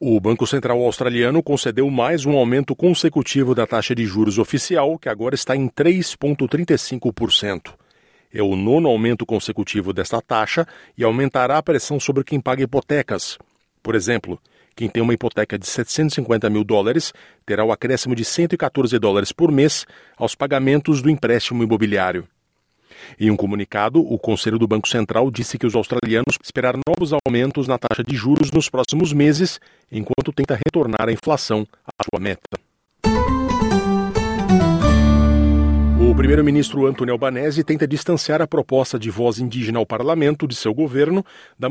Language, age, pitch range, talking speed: Portuguese, 40-59, 115-150 Hz, 150 wpm